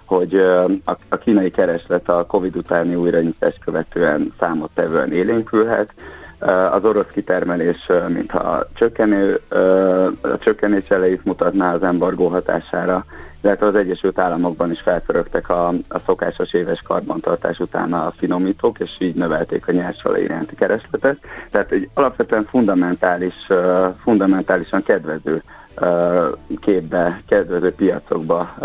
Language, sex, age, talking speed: Hungarian, male, 30-49, 110 wpm